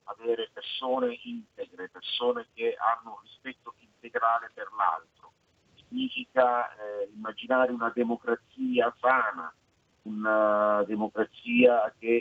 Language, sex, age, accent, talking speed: Italian, male, 50-69, native, 95 wpm